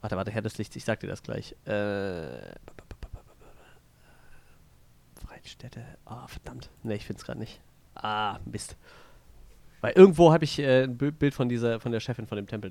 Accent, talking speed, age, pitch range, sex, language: German, 185 wpm, 30-49, 110-125 Hz, male, German